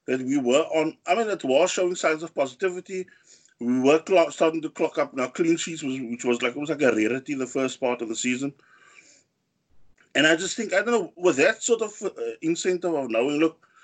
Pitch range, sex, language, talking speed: 135-185 Hz, male, English, 220 wpm